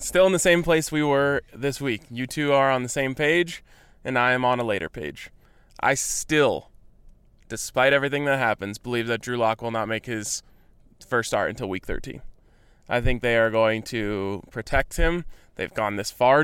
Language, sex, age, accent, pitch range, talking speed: English, male, 20-39, American, 115-145 Hz, 195 wpm